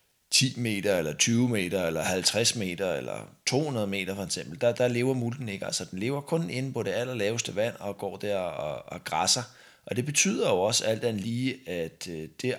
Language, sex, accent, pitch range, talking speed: Danish, male, native, 100-125 Hz, 205 wpm